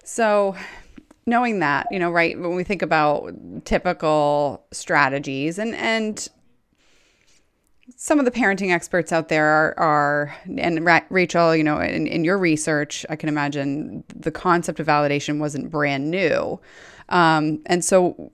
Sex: female